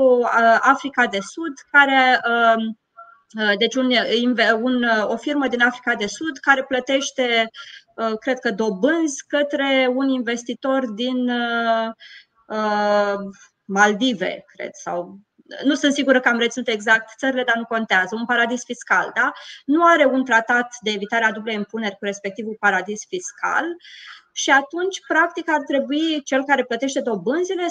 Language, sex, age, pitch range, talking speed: Romanian, female, 20-39, 225-295 Hz, 135 wpm